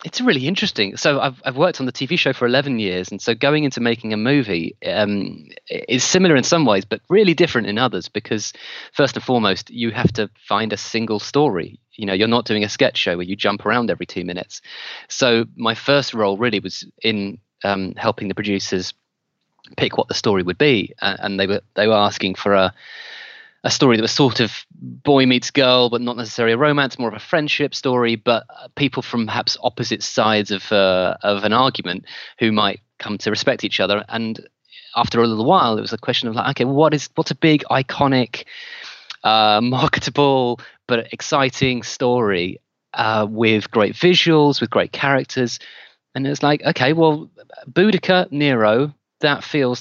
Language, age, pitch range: English, 30-49, 105-140 Hz